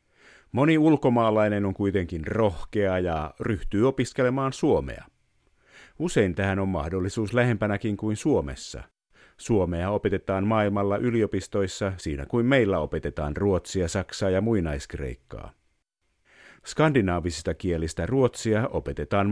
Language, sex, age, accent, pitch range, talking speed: Finnish, male, 50-69, native, 90-110 Hz, 100 wpm